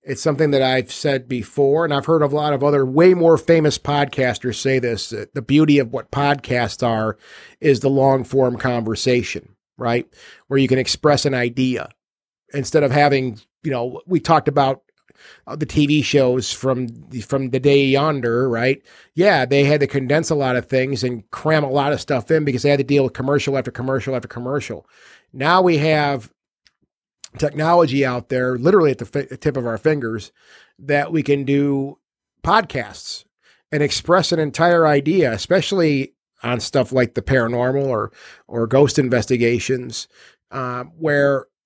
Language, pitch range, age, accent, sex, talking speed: English, 125-150 Hz, 40-59, American, male, 170 wpm